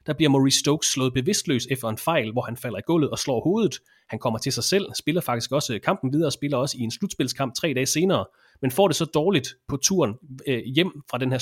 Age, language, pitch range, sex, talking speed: 30-49, English, 120-155 Hz, male, 245 wpm